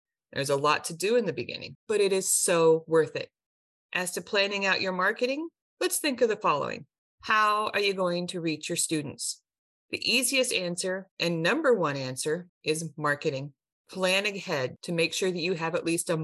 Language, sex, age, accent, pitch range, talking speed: English, female, 30-49, American, 155-205 Hz, 195 wpm